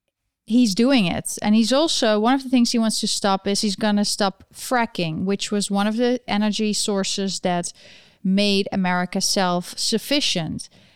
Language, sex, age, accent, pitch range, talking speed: English, female, 30-49, Dutch, 190-245 Hz, 170 wpm